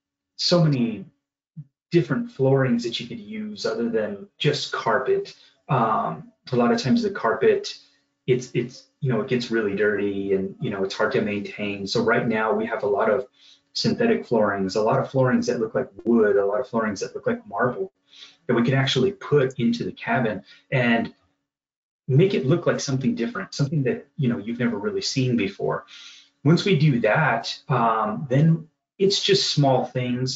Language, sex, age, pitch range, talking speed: English, male, 30-49, 115-150 Hz, 185 wpm